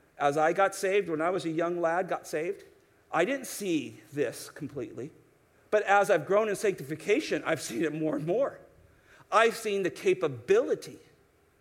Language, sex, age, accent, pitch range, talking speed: English, male, 50-69, American, 195-315 Hz, 170 wpm